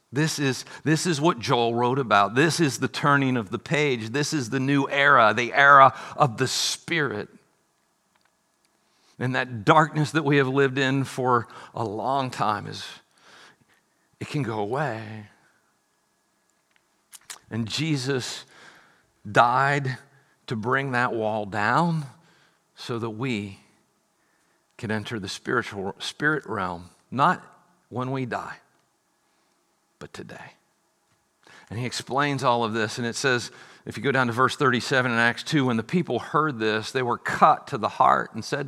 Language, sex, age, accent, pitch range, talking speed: English, male, 50-69, American, 115-145 Hz, 150 wpm